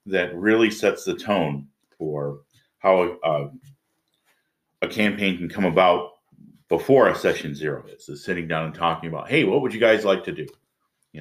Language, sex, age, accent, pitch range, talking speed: English, male, 50-69, American, 75-95 Hz, 180 wpm